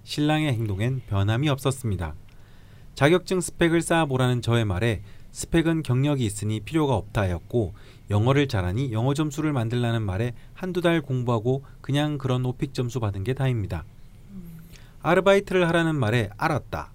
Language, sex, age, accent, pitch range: Korean, male, 30-49, native, 110-150 Hz